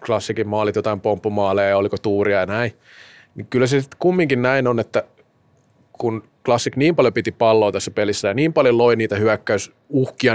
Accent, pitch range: native, 110-135 Hz